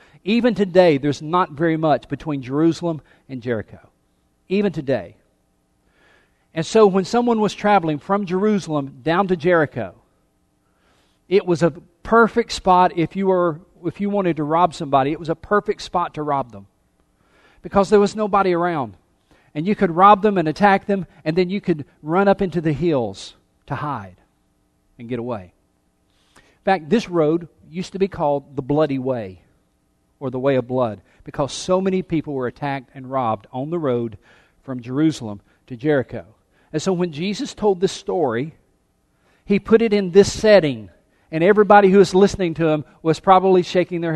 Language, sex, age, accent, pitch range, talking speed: English, male, 50-69, American, 130-190 Hz, 175 wpm